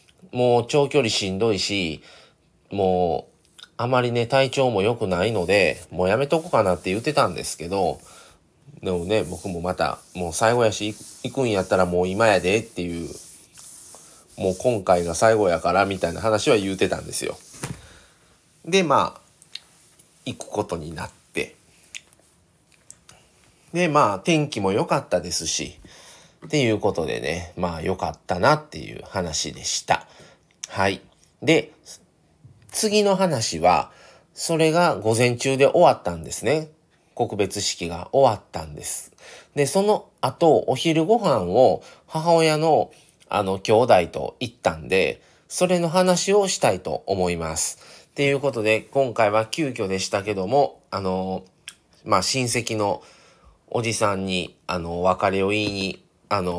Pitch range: 90-140 Hz